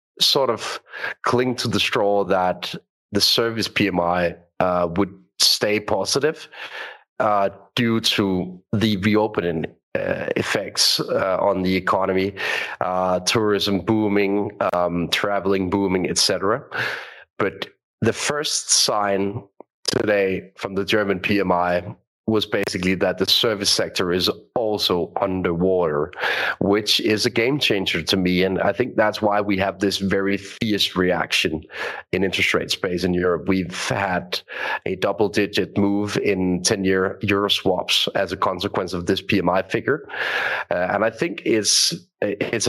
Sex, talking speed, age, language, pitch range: male, 140 wpm, 30-49, English, 95-105 Hz